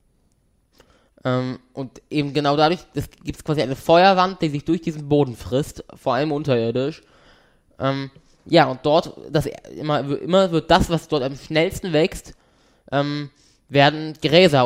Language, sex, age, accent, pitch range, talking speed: German, male, 20-39, German, 130-155 Hz, 145 wpm